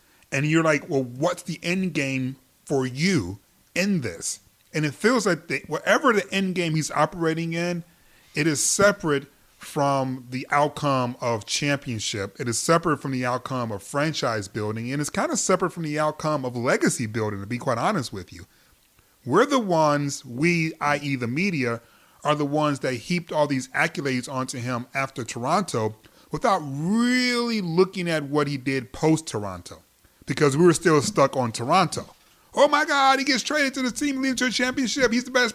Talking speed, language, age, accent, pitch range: 180 wpm, English, 30-49, American, 130-190 Hz